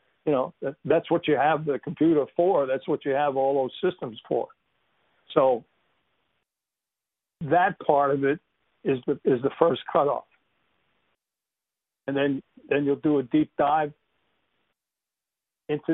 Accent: American